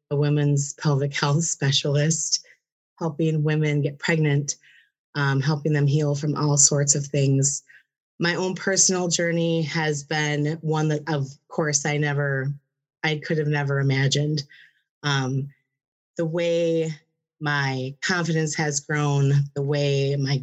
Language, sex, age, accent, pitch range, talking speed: English, female, 30-49, American, 140-165 Hz, 130 wpm